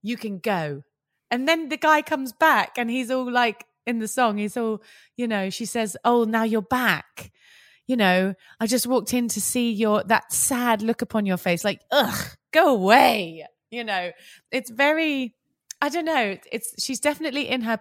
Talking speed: 190 wpm